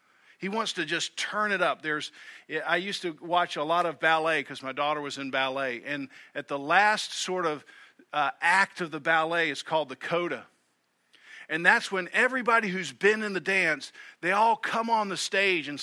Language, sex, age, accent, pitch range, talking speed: English, male, 50-69, American, 165-230 Hz, 200 wpm